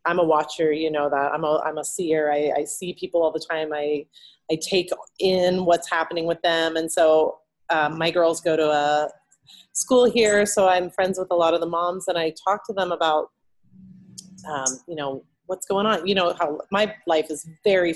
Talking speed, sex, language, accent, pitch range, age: 210 wpm, female, English, American, 160-205 Hz, 30-49